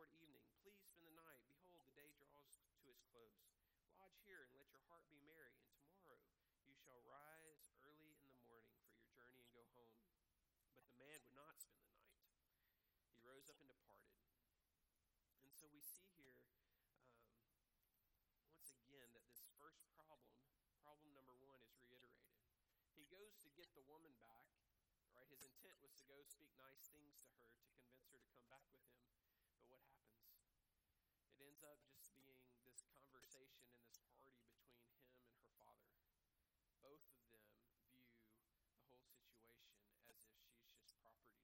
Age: 40-59